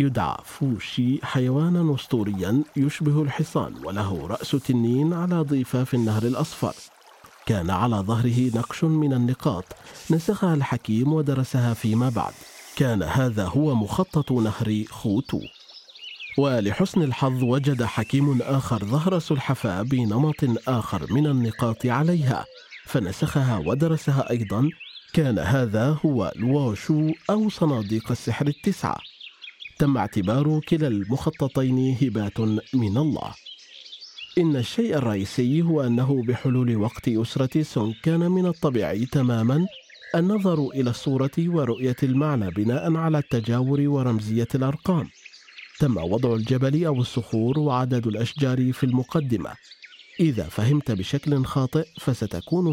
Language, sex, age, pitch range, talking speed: Arabic, male, 40-59, 115-150 Hz, 110 wpm